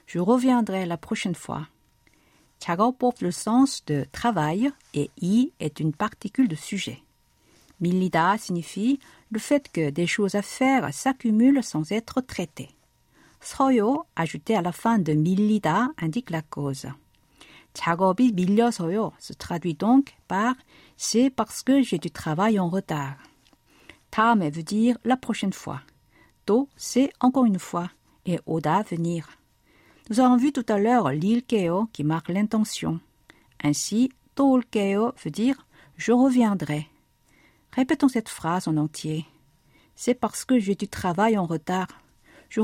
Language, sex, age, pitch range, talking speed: French, female, 50-69, 170-245 Hz, 140 wpm